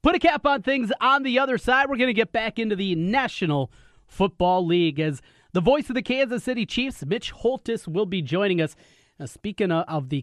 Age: 30-49